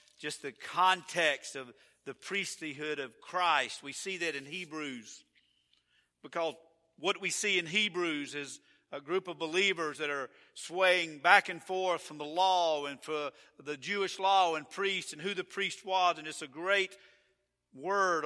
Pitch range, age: 150-185 Hz, 50-69